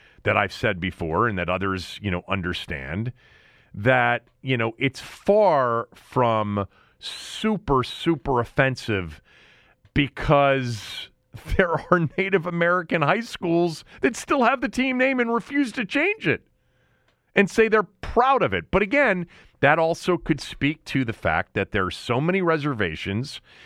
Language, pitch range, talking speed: English, 115-170 Hz, 145 wpm